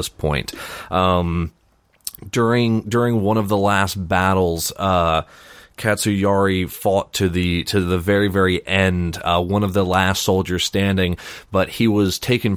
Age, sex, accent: 30-49, male, American